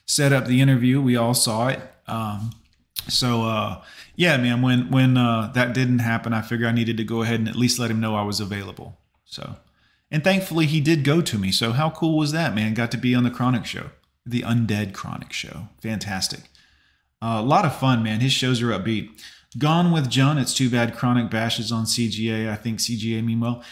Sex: male